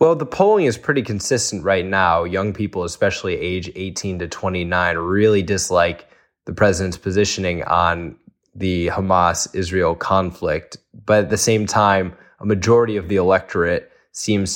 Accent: American